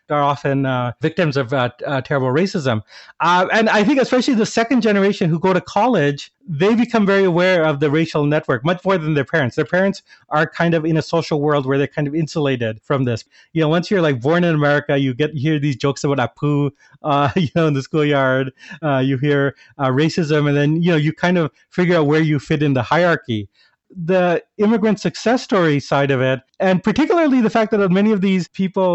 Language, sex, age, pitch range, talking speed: English, male, 30-49, 140-180 Hz, 230 wpm